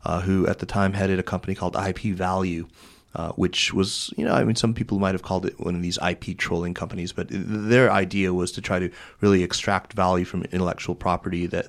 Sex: male